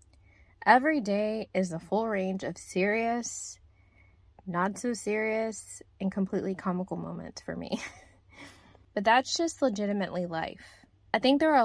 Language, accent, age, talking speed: English, American, 20-39, 125 wpm